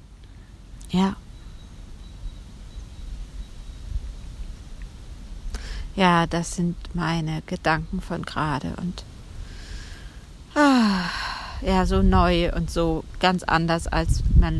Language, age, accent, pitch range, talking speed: German, 40-59, German, 80-100 Hz, 80 wpm